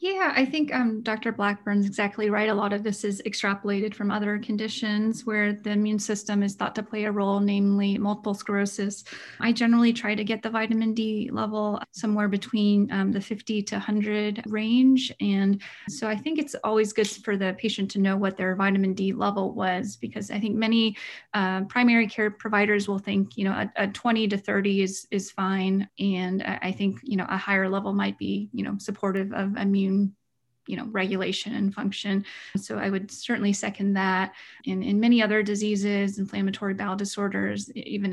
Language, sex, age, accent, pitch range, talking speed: English, female, 30-49, American, 195-215 Hz, 190 wpm